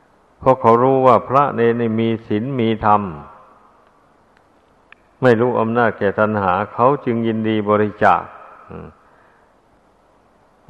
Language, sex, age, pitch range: Thai, male, 60-79, 105-125 Hz